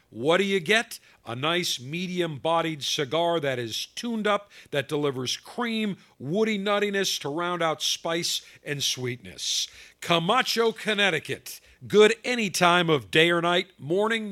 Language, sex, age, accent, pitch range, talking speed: English, male, 50-69, American, 130-180 Hz, 140 wpm